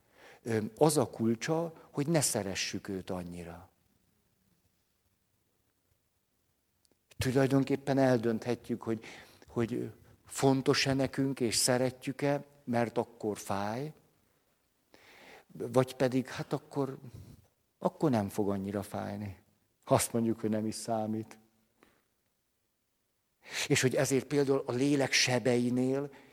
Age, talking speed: 60-79, 95 wpm